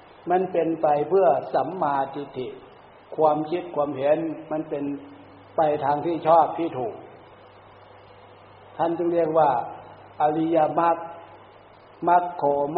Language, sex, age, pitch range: Thai, male, 60-79, 135-170 Hz